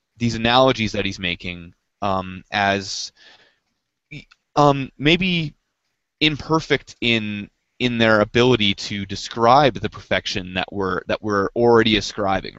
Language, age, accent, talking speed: English, 20-39, American, 115 wpm